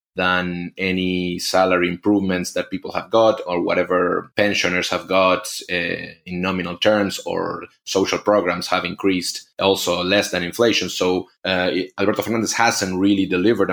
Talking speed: 145 wpm